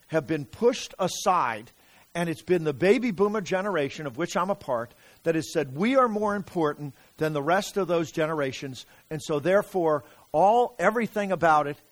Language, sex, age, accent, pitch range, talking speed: English, male, 50-69, American, 135-175 Hz, 180 wpm